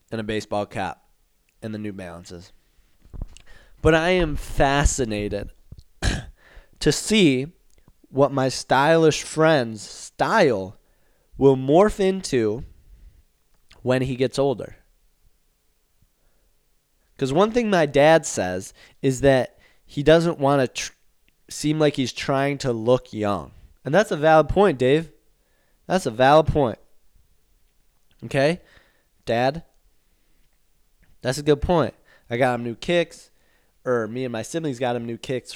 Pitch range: 110-150 Hz